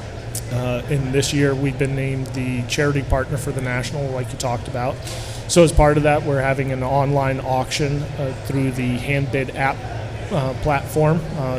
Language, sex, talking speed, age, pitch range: English, male, 180 wpm, 30-49, 130-150 Hz